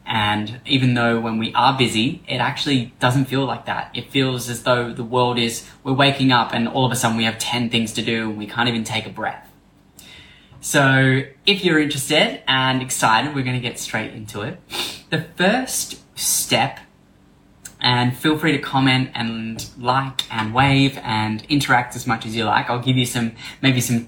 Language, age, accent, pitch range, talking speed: English, 10-29, Australian, 115-135 Hz, 195 wpm